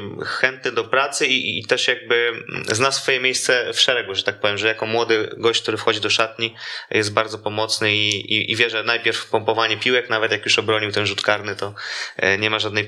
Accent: native